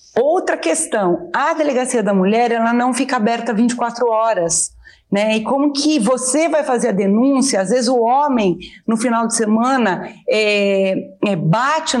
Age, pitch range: 40-59, 195-245 Hz